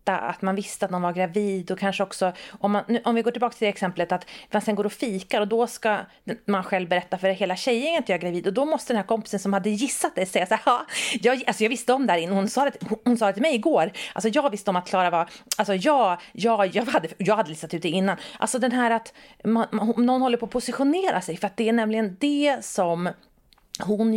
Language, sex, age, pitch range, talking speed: Swedish, female, 30-49, 190-250 Hz, 265 wpm